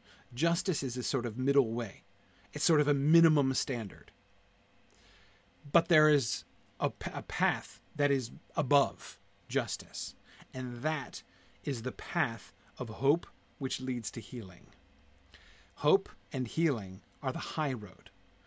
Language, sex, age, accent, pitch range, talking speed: English, male, 40-59, American, 100-145 Hz, 135 wpm